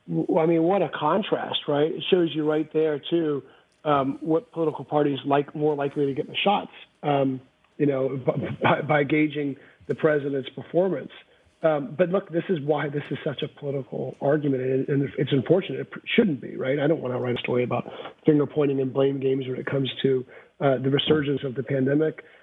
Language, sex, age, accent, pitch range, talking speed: English, male, 40-59, American, 135-155 Hz, 205 wpm